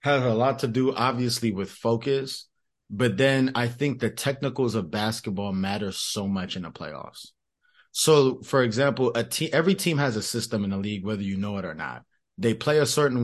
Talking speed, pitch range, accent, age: 205 wpm, 120-150 Hz, American, 20-39